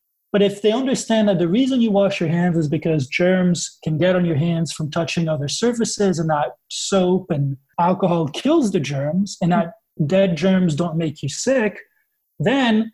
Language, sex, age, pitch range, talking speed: English, male, 30-49, 165-200 Hz, 185 wpm